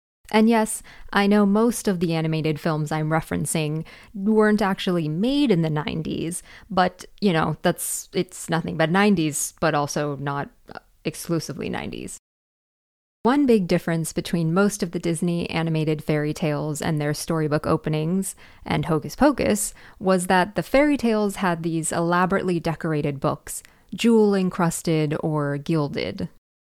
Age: 20-39